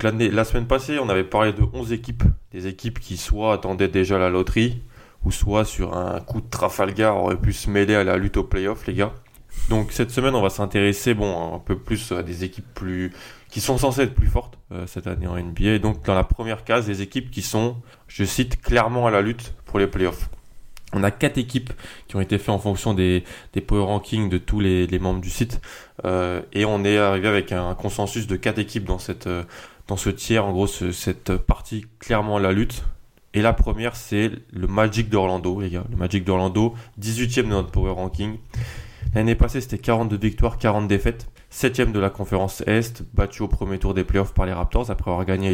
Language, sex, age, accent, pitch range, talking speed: French, male, 20-39, French, 95-115 Hz, 220 wpm